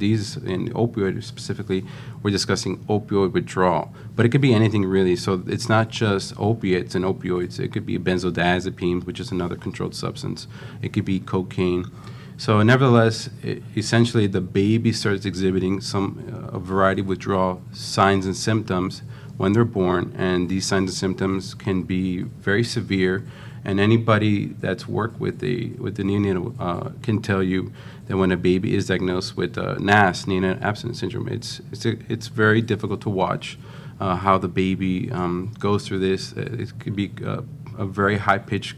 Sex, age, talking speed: male, 40-59, 165 wpm